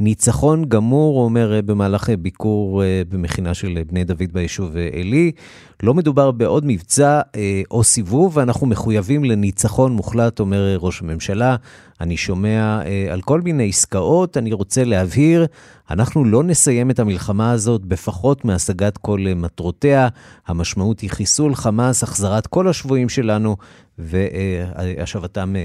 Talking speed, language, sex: 120 wpm, Hebrew, male